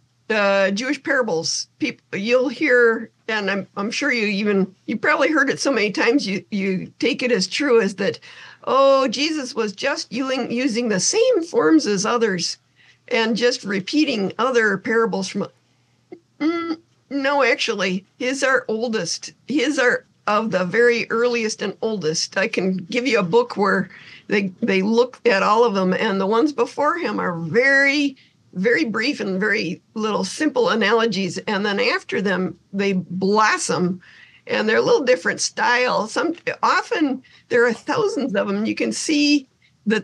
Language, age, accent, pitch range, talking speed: English, 50-69, American, 200-275 Hz, 165 wpm